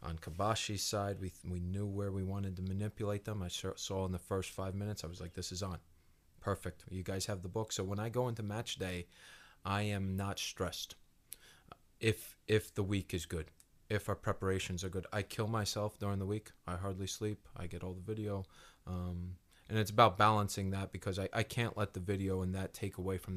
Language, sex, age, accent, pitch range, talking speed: Swedish, male, 30-49, American, 90-105 Hz, 220 wpm